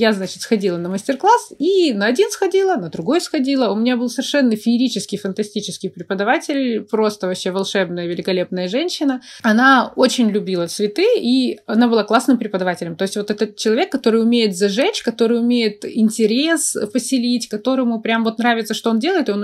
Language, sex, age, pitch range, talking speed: Russian, female, 20-39, 200-255 Hz, 165 wpm